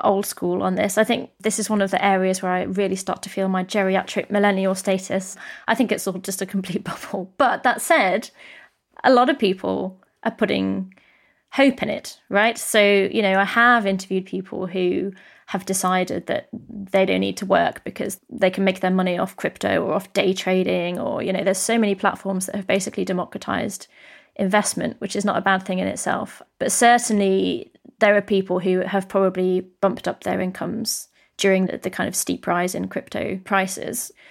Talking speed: 200 wpm